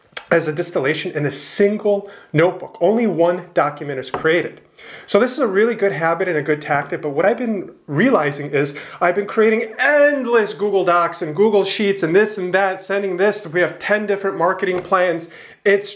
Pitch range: 155-200 Hz